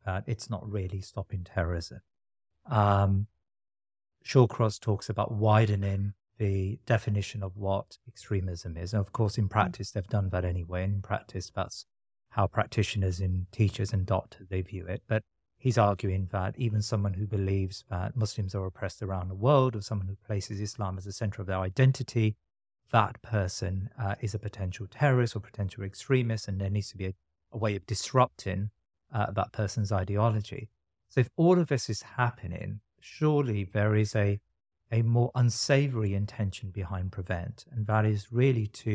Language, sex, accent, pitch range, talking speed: English, male, British, 95-115 Hz, 170 wpm